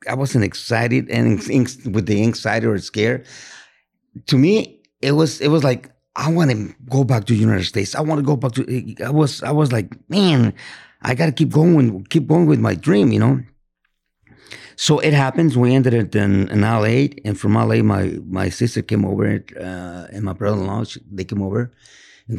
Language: English